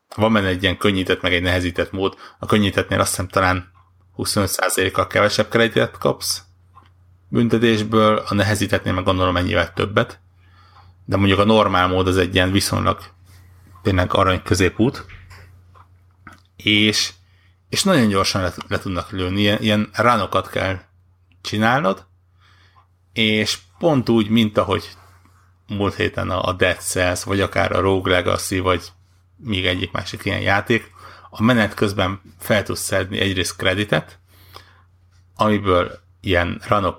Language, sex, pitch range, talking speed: Hungarian, male, 90-100 Hz, 130 wpm